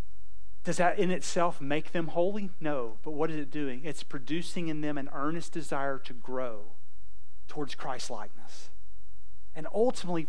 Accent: American